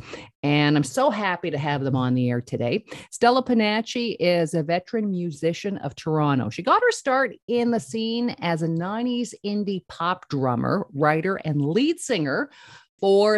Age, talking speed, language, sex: 50-69, 165 wpm, English, female